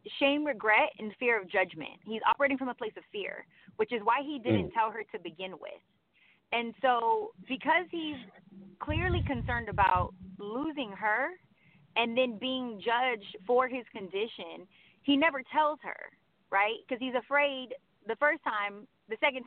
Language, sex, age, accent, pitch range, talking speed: English, female, 30-49, American, 215-295 Hz, 160 wpm